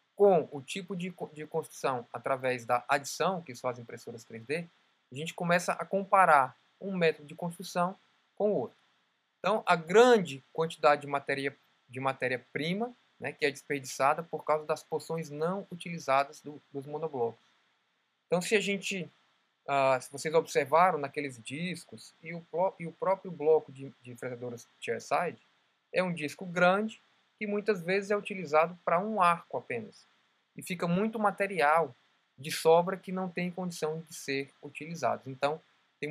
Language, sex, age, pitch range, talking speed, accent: Portuguese, male, 20-39, 130-180 Hz, 160 wpm, Brazilian